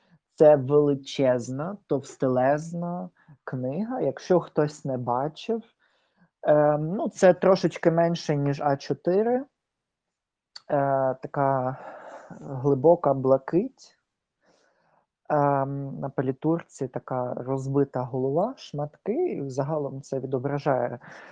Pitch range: 140-180 Hz